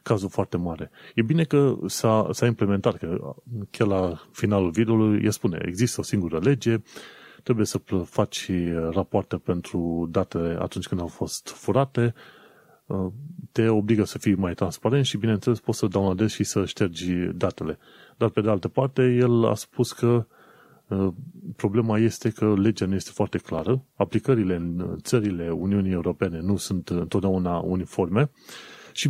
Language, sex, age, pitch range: Romanian, male, 30-49, 95-115 Hz